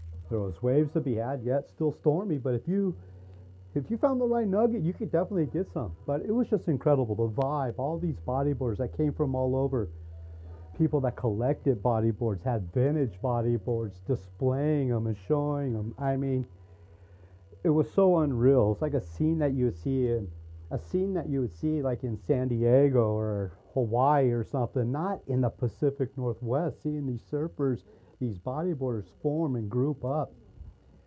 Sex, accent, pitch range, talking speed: male, American, 110-150 Hz, 180 wpm